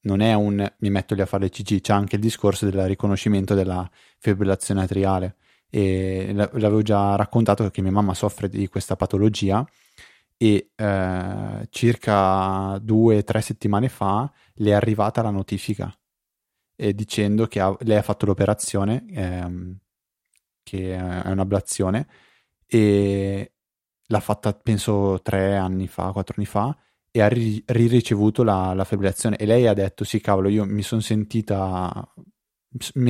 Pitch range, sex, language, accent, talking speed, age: 95-115 Hz, male, Italian, native, 150 wpm, 20-39